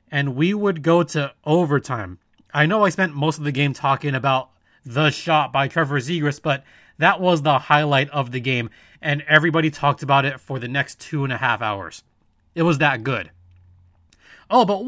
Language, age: English, 20-39